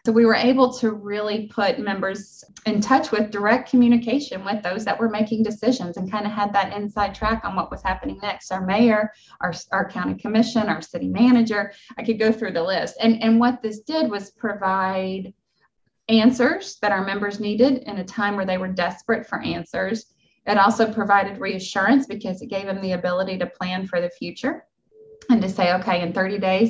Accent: American